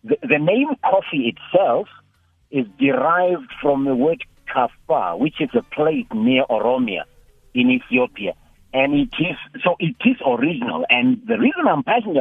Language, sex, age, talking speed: English, male, 60-79, 150 wpm